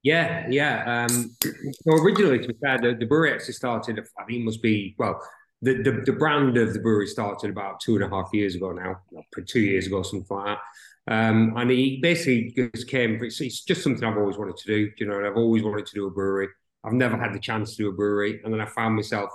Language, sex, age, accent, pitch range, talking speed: English, male, 30-49, British, 105-125 Hz, 235 wpm